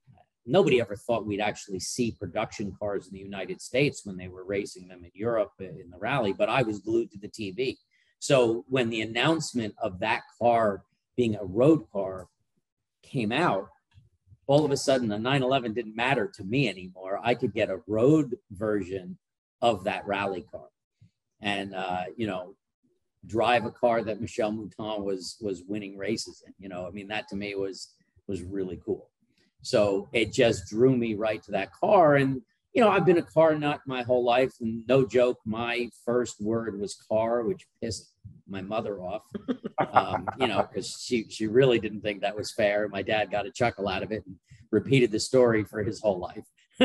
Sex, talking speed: male, 190 wpm